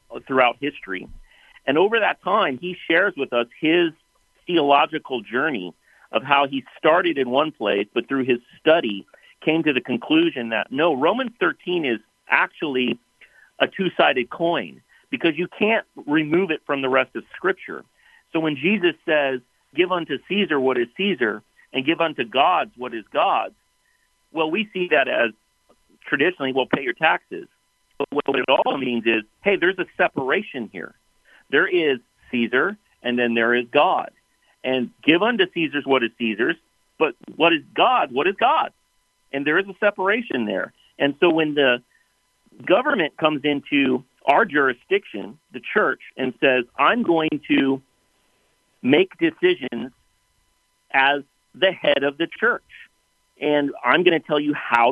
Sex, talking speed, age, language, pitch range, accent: male, 155 wpm, 50-69, English, 130-185 Hz, American